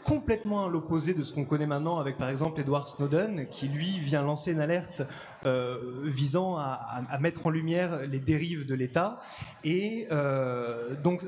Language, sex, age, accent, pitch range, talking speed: French, male, 20-39, French, 145-185 Hz, 170 wpm